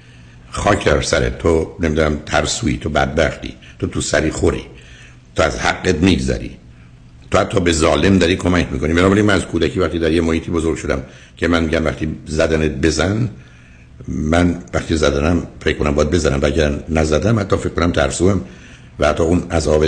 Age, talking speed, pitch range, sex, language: 60-79, 170 wpm, 70-90 Hz, male, Persian